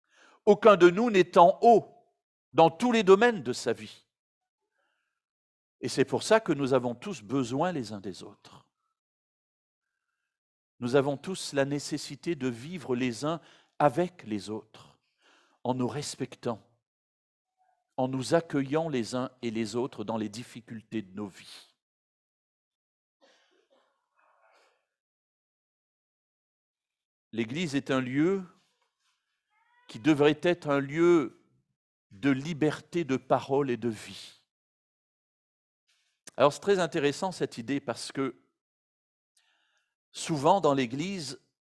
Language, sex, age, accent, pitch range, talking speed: French, male, 50-69, French, 120-175 Hz, 120 wpm